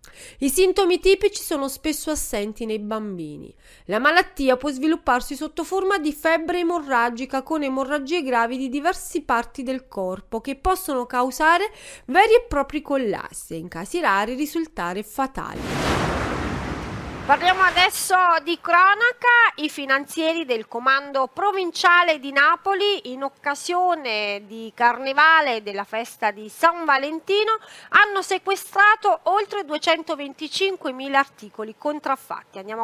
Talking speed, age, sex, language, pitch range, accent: 120 wpm, 30-49, female, Italian, 240-355 Hz, native